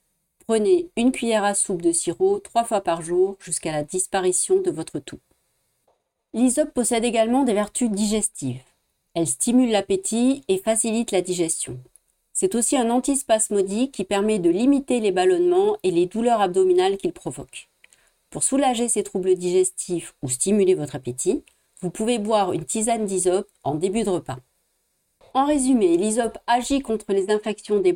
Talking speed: 155 wpm